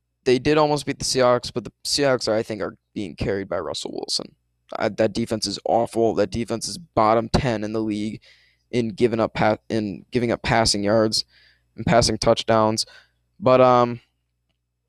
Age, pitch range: 20-39, 105-125 Hz